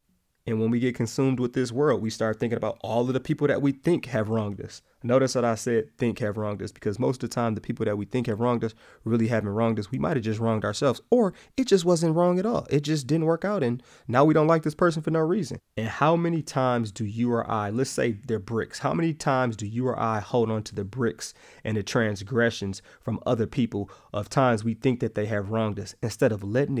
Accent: American